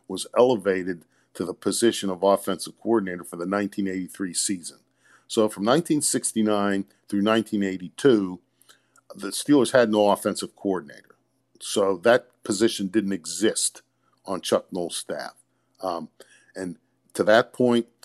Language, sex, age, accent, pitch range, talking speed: English, male, 50-69, American, 100-115 Hz, 125 wpm